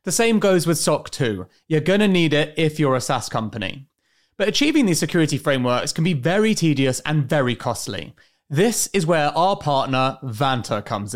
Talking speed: 190 wpm